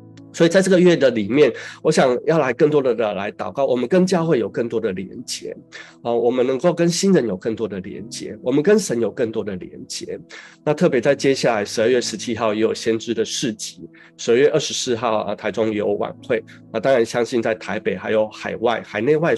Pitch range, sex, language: 110-140 Hz, male, Chinese